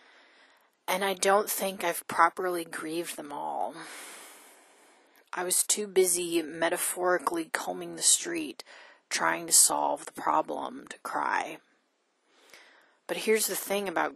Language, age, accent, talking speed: English, 30-49, American, 125 wpm